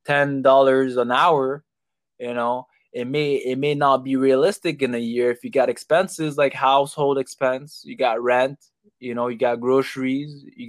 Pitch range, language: 125-145 Hz, English